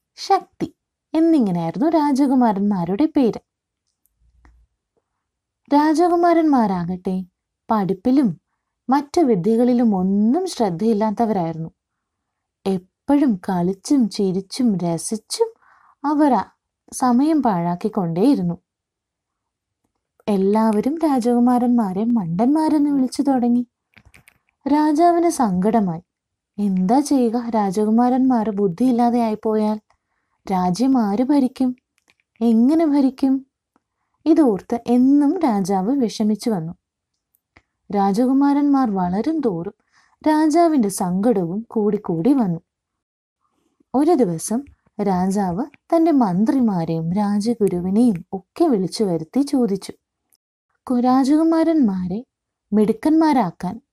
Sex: female